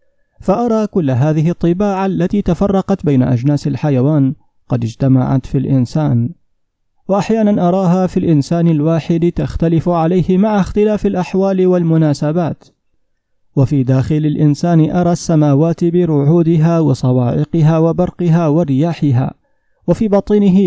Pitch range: 145-175 Hz